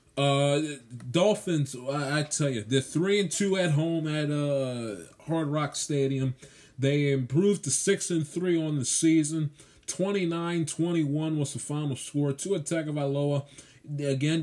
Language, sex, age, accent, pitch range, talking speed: English, male, 20-39, American, 130-150 Hz, 150 wpm